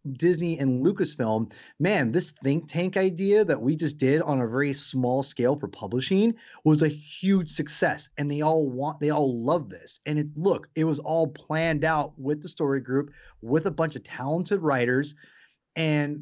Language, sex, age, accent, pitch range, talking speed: English, male, 30-49, American, 130-160 Hz, 185 wpm